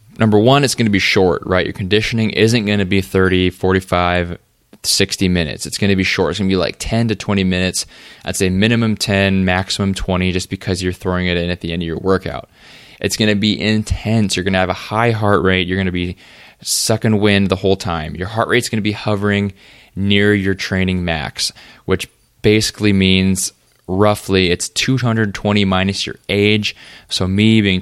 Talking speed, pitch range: 205 wpm, 95-105 Hz